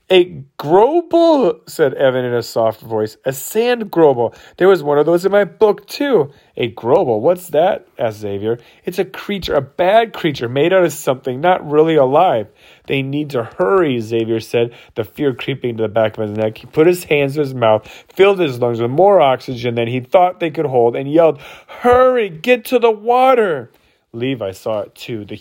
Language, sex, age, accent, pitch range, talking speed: English, male, 30-49, American, 120-175 Hz, 200 wpm